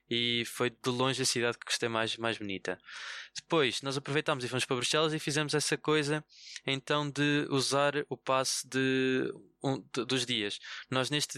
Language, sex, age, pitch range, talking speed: Portuguese, male, 20-39, 120-140 Hz, 180 wpm